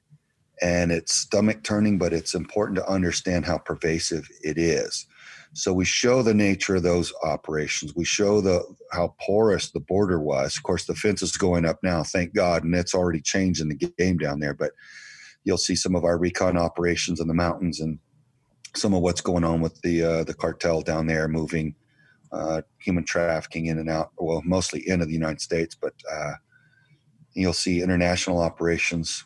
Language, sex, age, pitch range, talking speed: English, male, 40-59, 80-95 Hz, 185 wpm